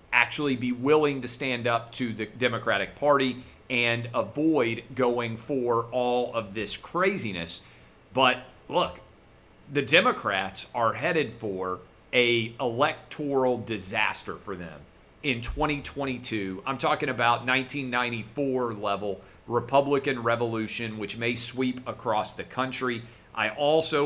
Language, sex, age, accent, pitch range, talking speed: English, male, 40-59, American, 110-135 Hz, 115 wpm